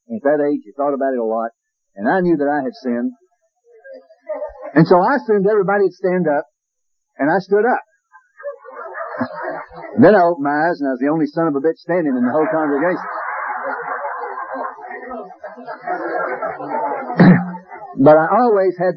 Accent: American